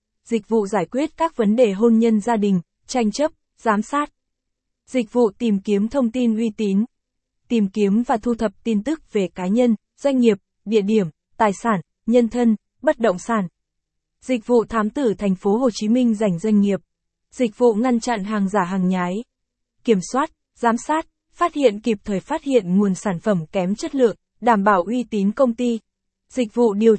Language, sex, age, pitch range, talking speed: Vietnamese, female, 20-39, 205-245 Hz, 200 wpm